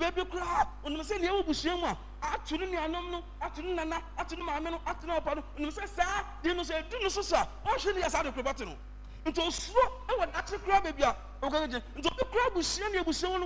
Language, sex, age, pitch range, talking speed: English, male, 50-69, 305-410 Hz, 80 wpm